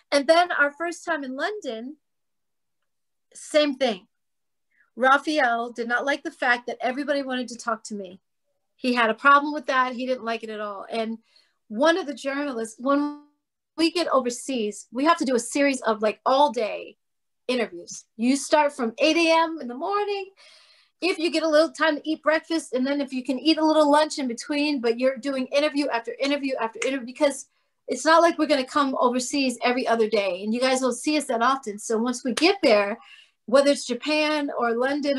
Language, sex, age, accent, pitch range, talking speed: English, female, 40-59, American, 235-295 Hz, 205 wpm